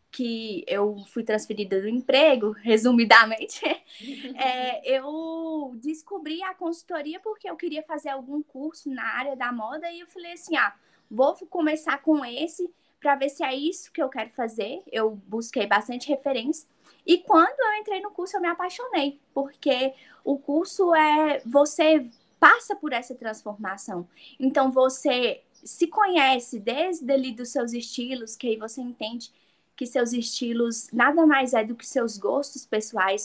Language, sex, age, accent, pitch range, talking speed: Portuguese, female, 10-29, Brazilian, 240-315 Hz, 155 wpm